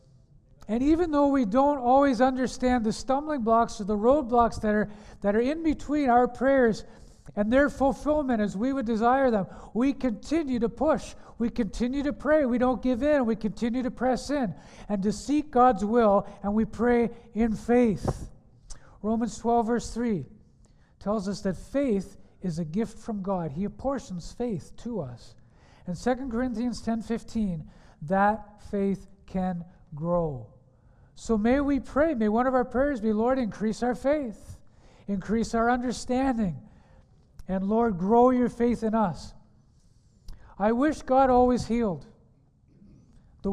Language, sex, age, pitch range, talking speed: English, male, 50-69, 200-250 Hz, 155 wpm